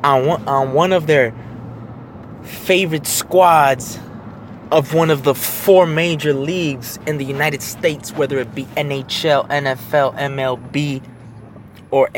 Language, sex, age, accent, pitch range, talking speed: English, male, 20-39, American, 125-170 Hz, 120 wpm